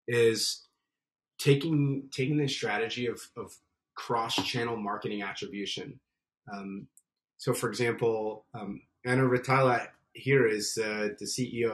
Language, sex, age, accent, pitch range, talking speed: English, male, 30-49, American, 110-135 Hz, 120 wpm